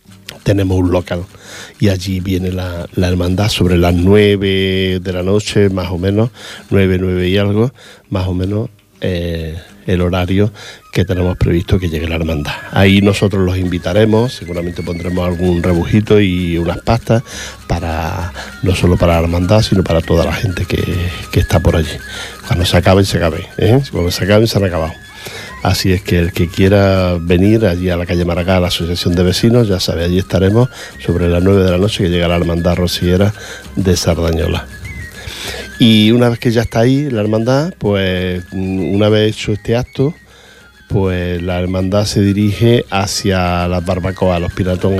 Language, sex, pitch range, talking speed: Portuguese, male, 90-105 Hz, 175 wpm